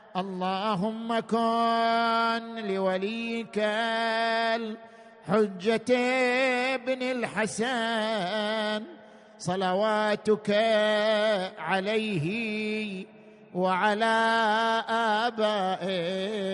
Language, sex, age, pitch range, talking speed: Arabic, male, 50-69, 185-225 Hz, 35 wpm